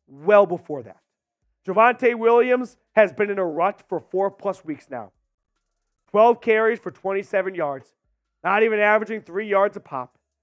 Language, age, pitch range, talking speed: English, 30-49, 160-215 Hz, 155 wpm